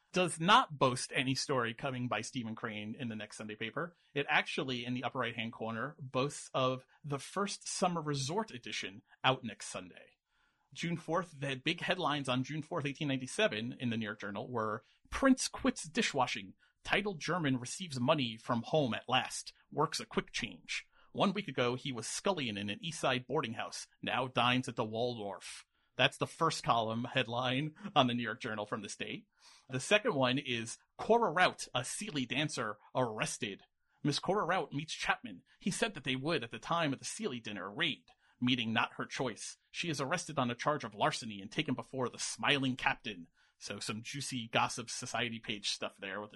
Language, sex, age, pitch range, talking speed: English, male, 30-49, 115-160 Hz, 190 wpm